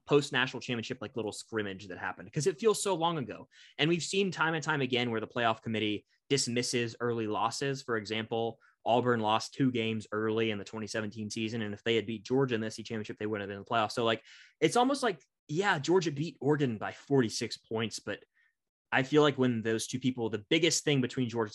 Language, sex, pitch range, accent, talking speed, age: English, male, 110-135 Hz, American, 220 wpm, 20-39